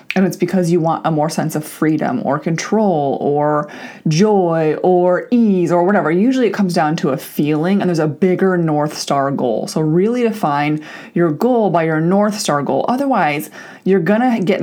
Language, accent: English, American